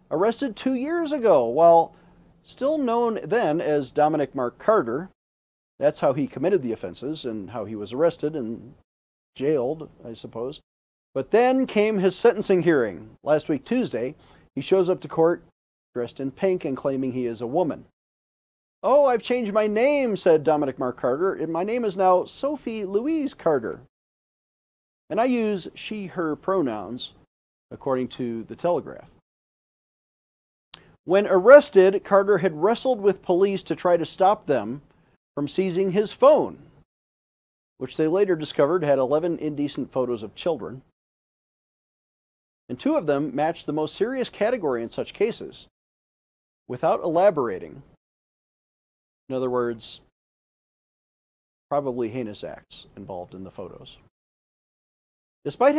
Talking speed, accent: 140 wpm, American